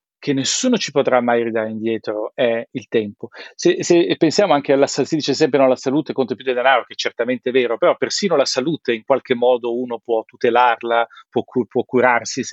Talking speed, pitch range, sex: 200 wpm, 125-150 Hz, male